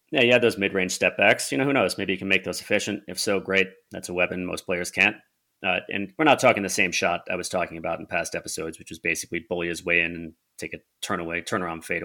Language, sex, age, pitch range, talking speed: English, male, 30-49, 85-100 Hz, 275 wpm